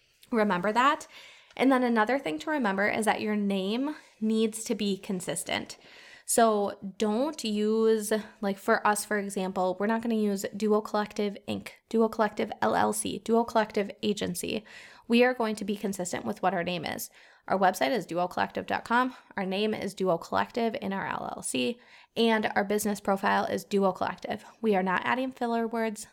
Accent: American